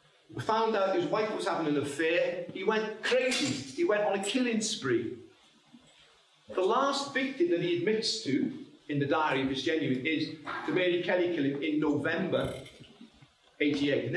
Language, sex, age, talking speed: English, male, 40-59, 165 wpm